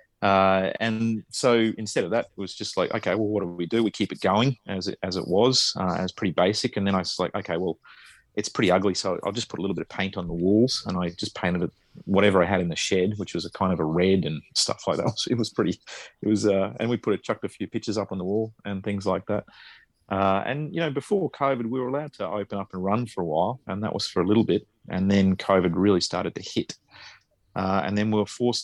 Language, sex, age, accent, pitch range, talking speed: English, male, 30-49, Australian, 95-110 Hz, 275 wpm